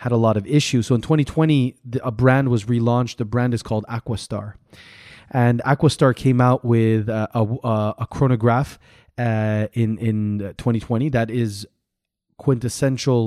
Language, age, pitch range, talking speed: English, 30-49, 110-125 Hz, 145 wpm